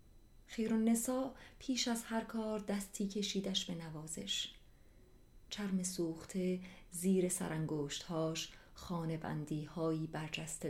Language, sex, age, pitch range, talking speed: English, female, 30-49, 160-190 Hz, 105 wpm